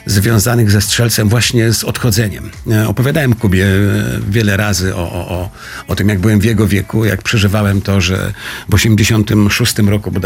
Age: 50-69